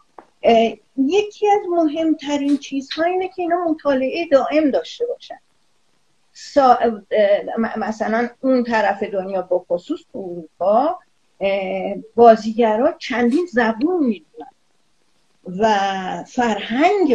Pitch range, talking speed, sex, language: 185-260 Hz, 85 wpm, female, Persian